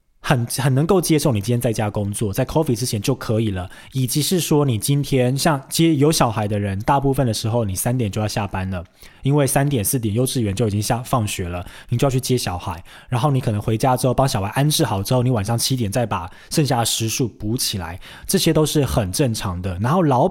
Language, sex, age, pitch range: Chinese, male, 20-39, 110-140 Hz